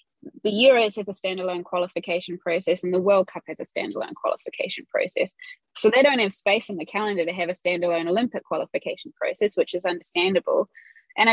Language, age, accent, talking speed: English, 20-39, Australian, 185 wpm